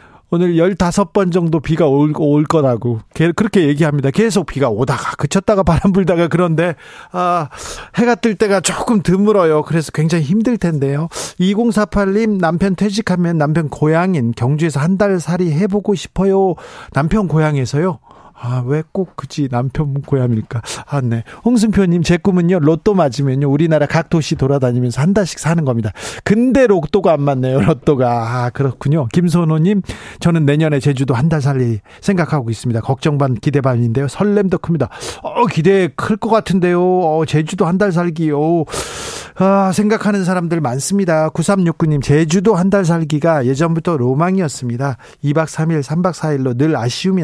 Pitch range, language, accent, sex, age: 140-190 Hz, Korean, native, male, 40-59